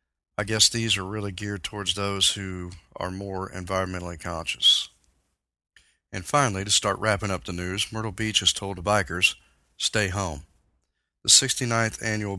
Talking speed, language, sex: 155 wpm, English, male